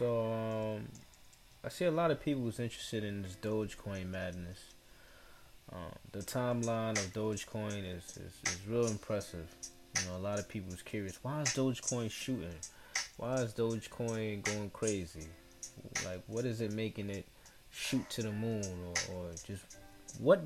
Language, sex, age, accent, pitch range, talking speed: English, male, 20-39, American, 100-125 Hz, 160 wpm